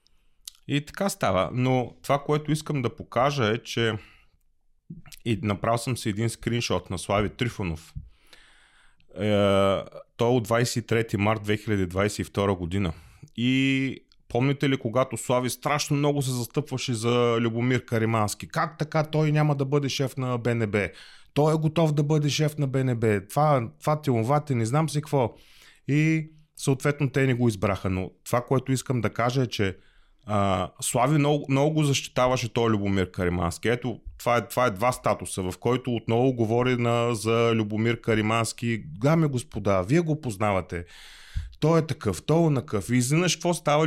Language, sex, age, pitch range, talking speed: Bulgarian, male, 30-49, 105-140 Hz, 155 wpm